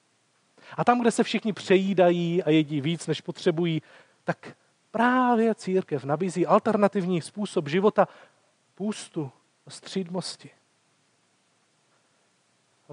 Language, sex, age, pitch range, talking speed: Czech, male, 40-59, 160-210 Hz, 95 wpm